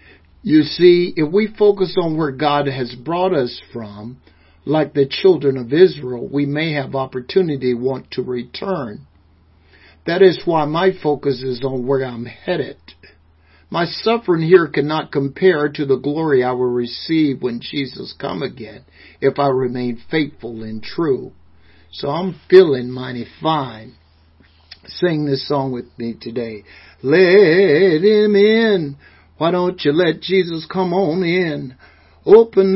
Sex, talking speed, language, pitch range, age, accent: male, 145 wpm, English, 125-190 Hz, 60-79, American